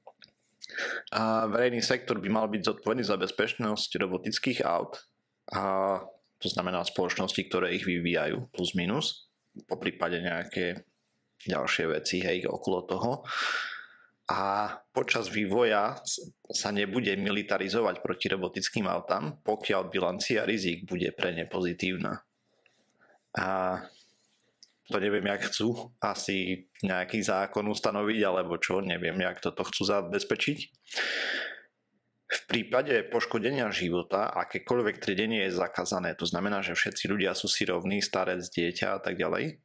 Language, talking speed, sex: Slovak, 125 wpm, male